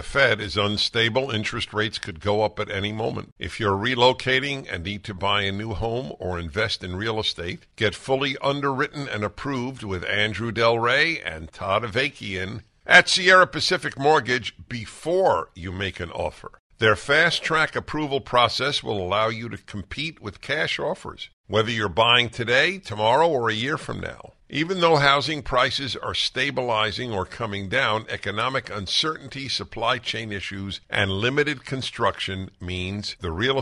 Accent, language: American, English